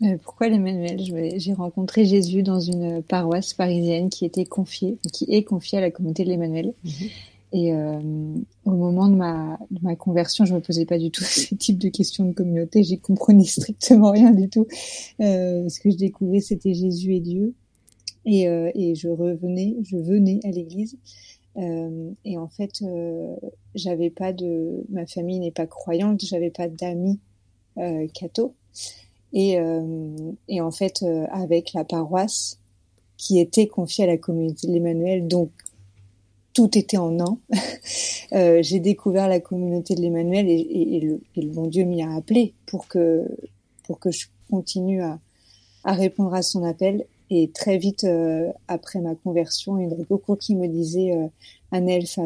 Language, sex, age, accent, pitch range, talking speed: French, female, 30-49, French, 165-195 Hz, 175 wpm